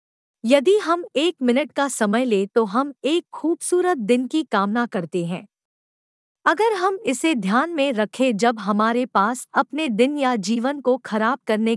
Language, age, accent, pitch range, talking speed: Hindi, 50-69, native, 215-290 Hz, 165 wpm